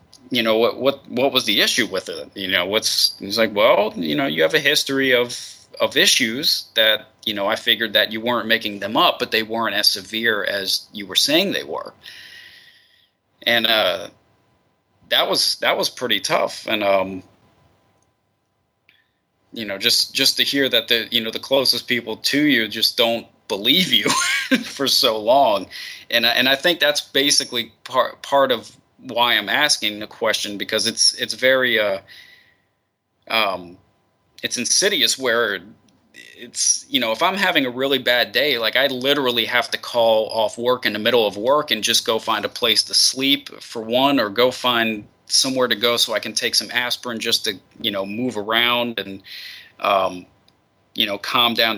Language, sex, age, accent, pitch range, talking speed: English, male, 20-39, American, 110-135 Hz, 185 wpm